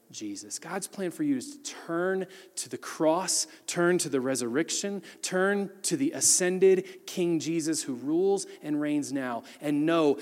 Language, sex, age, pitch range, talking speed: English, male, 30-49, 135-195 Hz, 165 wpm